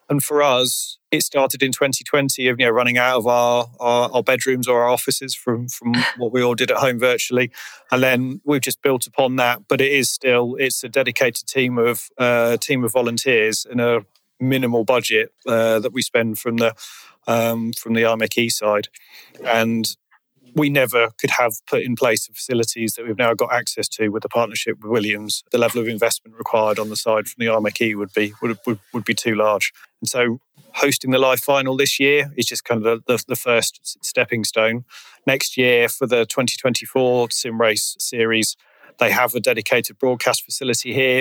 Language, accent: English, British